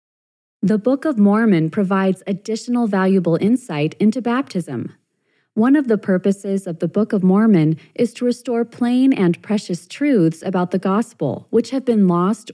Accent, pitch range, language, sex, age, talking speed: American, 175-240 Hz, English, female, 30-49, 160 wpm